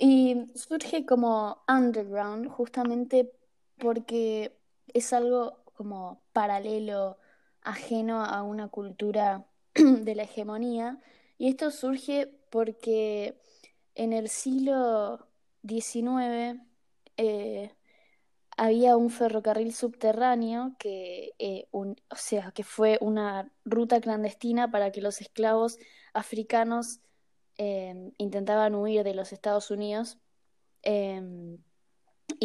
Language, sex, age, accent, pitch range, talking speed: Spanish, female, 20-39, Argentinian, 205-240 Hz, 100 wpm